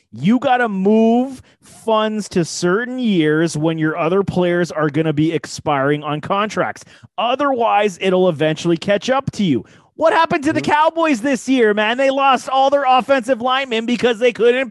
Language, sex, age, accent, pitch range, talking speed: English, male, 30-49, American, 155-210 Hz, 175 wpm